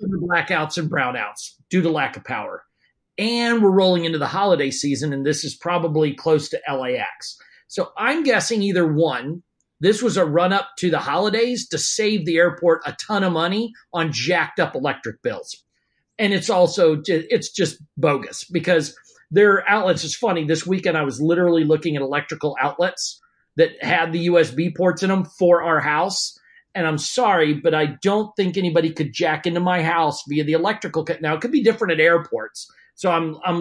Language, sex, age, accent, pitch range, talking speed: English, male, 40-59, American, 155-205 Hz, 185 wpm